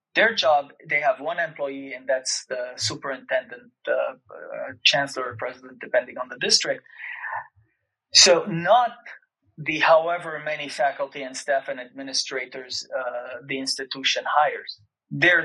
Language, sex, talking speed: English, male, 130 wpm